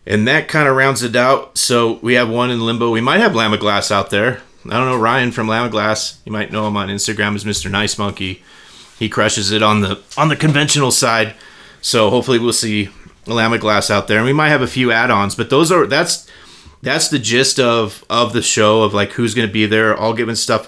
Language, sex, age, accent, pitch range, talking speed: English, male, 30-49, American, 100-120 Hz, 240 wpm